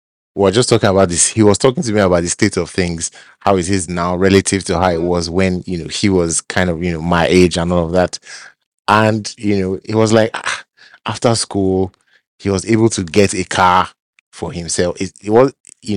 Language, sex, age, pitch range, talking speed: English, male, 30-49, 85-105 Hz, 230 wpm